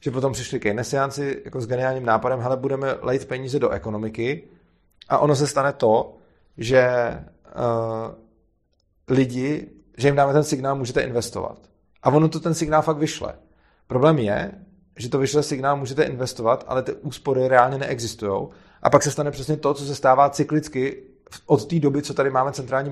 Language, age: Czech, 30-49